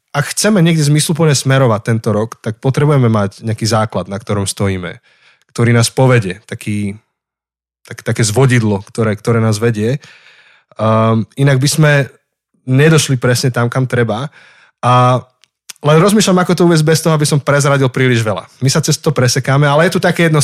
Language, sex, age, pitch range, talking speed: Slovak, male, 20-39, 110-135 Hz, 165 wpm